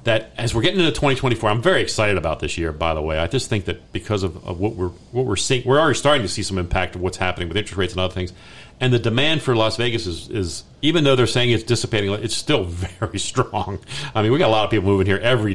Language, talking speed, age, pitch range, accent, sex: English, 280 wpm, 40-59, 95-120 Hz, American, male